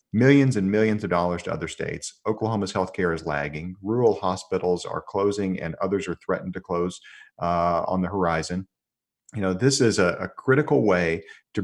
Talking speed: 180 wpm